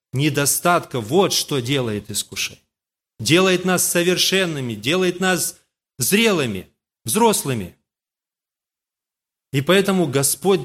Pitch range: 140-200 Hz